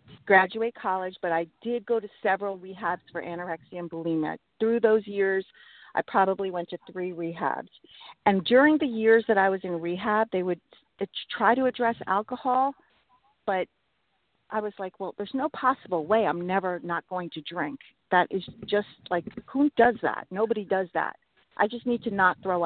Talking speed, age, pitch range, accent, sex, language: 180 wpm, 40-59, 170-210 Hz, American, female, English